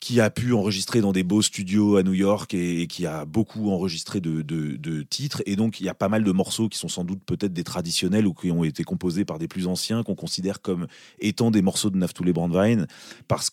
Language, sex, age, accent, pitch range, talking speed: French, male, 30-49, French, 85-115 Hz, 245 wpm